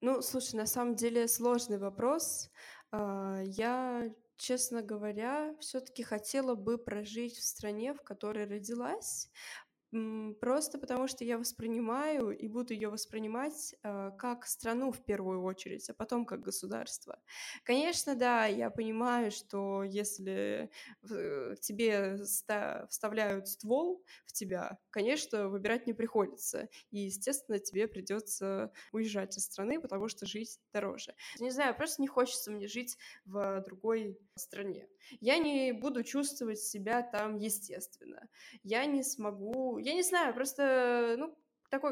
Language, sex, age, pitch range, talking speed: Russian, female, 20-39, 205-255 Hz, 125 wpm